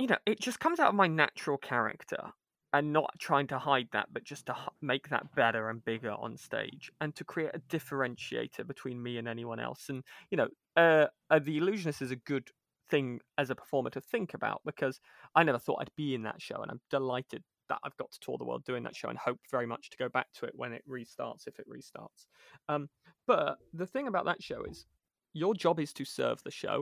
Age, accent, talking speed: 20-39, British, 235 wpm